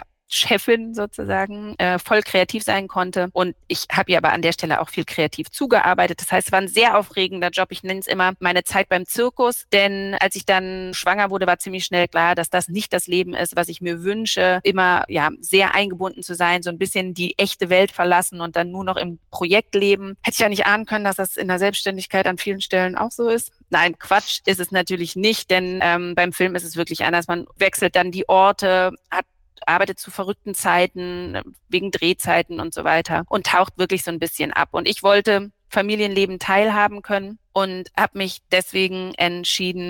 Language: German